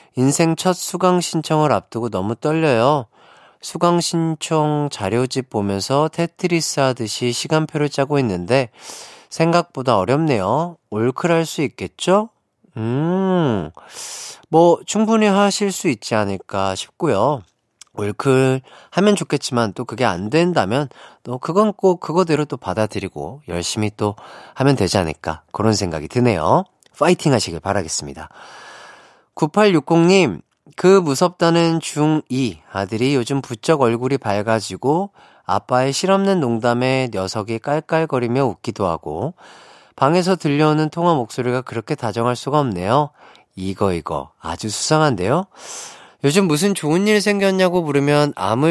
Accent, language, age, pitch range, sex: native, Korean, 40-59, 110-165 Hz, male